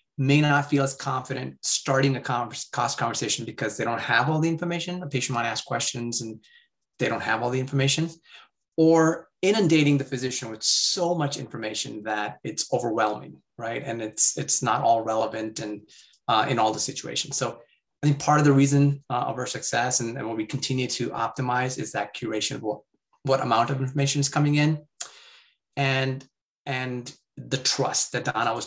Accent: American